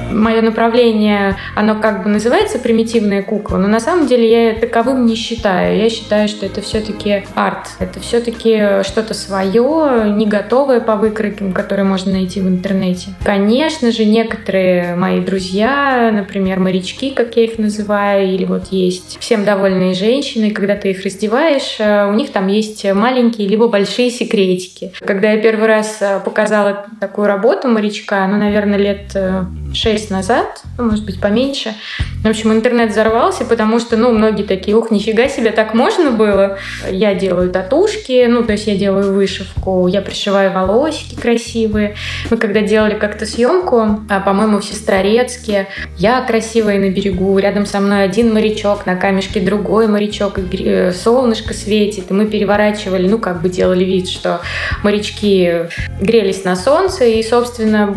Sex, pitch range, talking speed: female, 195-225 Hz, 155 wpm